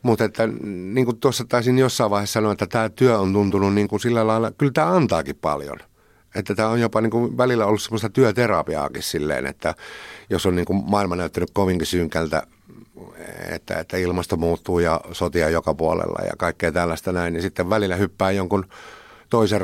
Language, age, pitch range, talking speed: Finnish, 60-79, 85-110 Hz, 155 wpm